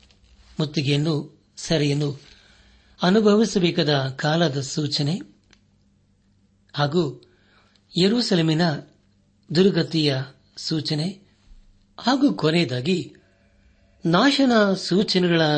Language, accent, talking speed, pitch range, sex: Kannada, native, 50 wpm, 100-165 Hz, male